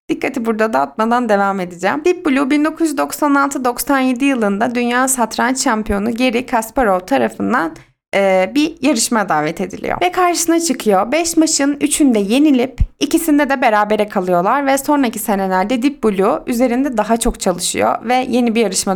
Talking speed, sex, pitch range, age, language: 140 wpm, female, 200-280 Hz, 30-49, Turkish